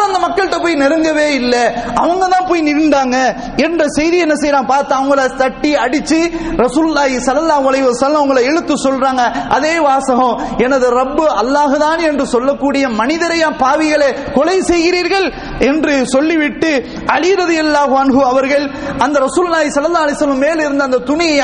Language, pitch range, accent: English, 270-330 Hz, Indian